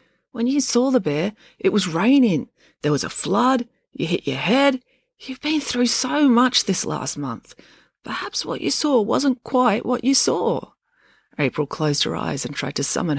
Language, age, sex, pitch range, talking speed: English, 30-49, female, 145-215 Hz, 185 wpm